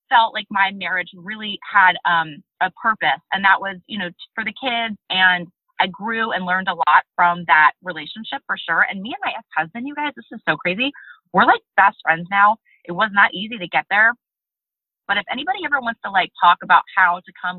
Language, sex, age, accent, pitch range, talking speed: English, female, 20-39, American, 180-230 Hz, 220 wpm